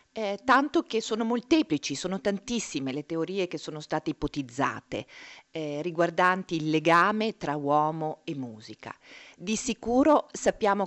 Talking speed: 135 wpm